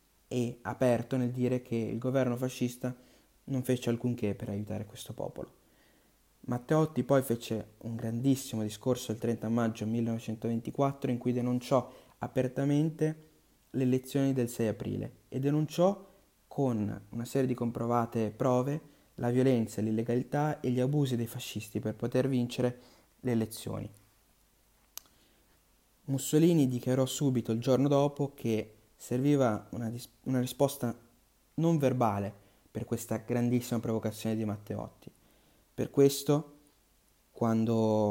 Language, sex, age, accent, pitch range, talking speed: Italian, male, 20-39, native, 110-130 Hz, 120 wpm